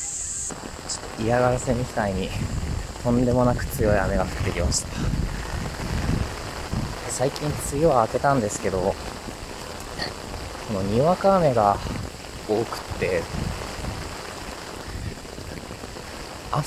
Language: Japanese